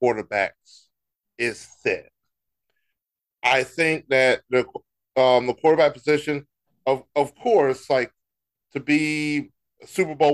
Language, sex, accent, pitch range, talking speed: English, male, American, 125-165 Hz, 115 wpm